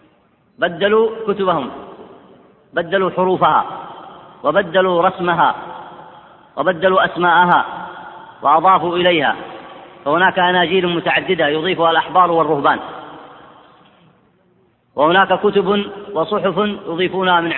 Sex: female